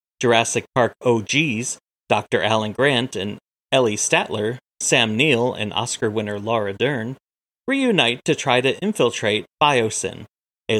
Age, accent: 30-49, American